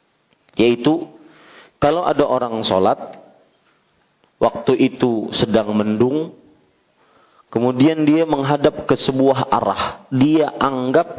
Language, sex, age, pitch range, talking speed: Malay, male, 40-59, 120-150 Hz, 90 wpm